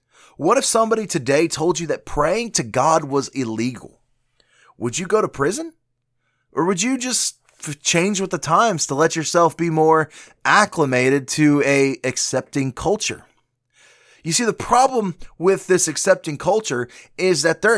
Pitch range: 140-185 Hz